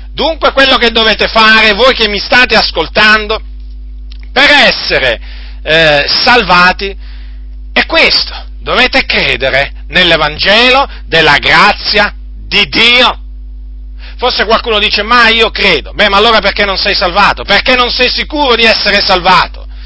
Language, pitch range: Italian, 150-230 Hz